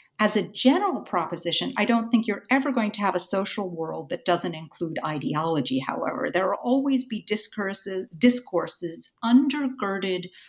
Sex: female